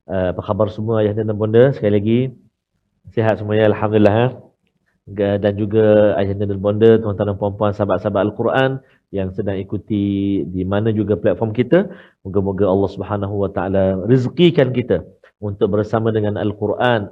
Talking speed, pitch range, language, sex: 150 wpm, 100-125 Hz, Malayalam, male